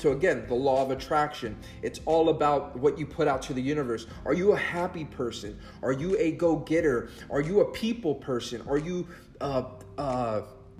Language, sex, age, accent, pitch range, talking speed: English, male, 30-49, American, 125-175 Hz, 190 wpm